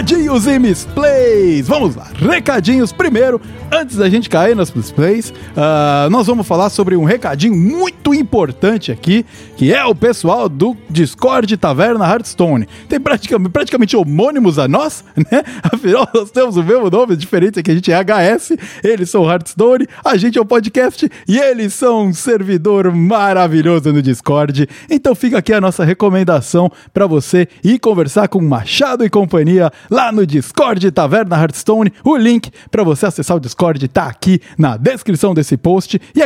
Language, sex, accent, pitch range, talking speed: Portuguese, male, Brazilian, 170-235 Hz, 165 wpm